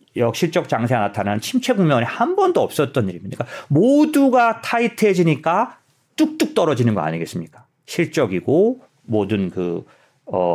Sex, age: male, 40-59